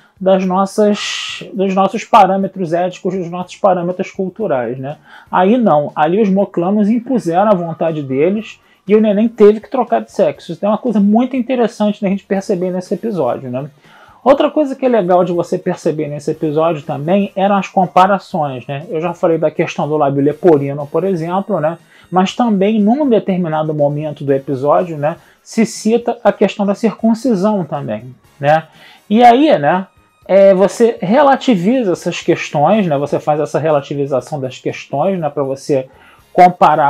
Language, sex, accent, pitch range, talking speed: Portuguese, male, Brazilian, 150-205 Hz, 160 wpm